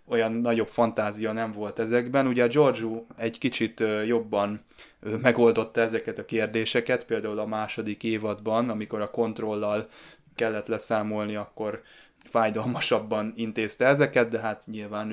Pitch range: 105-115 Hz